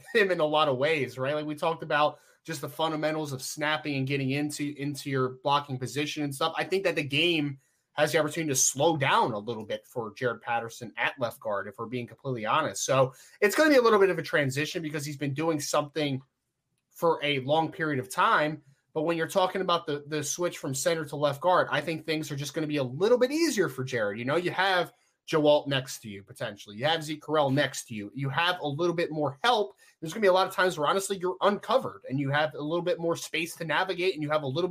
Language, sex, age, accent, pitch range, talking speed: English, male, 20-39, American, 130-165 Hz, 255 wpm